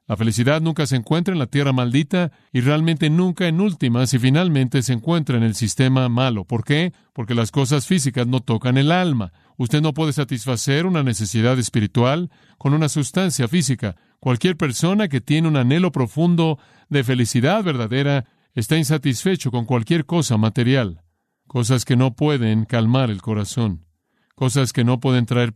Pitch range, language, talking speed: 120-150 Hz, Spanish, 165 wpm